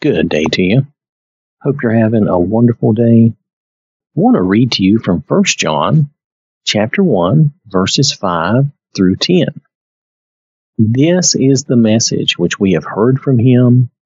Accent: American